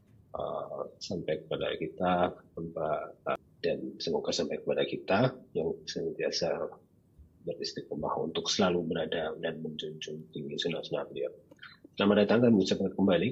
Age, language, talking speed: 30-49, Indonesian, 115 wpm